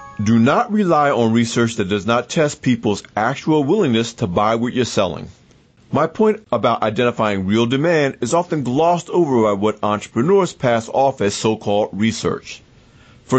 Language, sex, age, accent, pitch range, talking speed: English, male, 40-59, American, 110-155 Hz, 160 wpm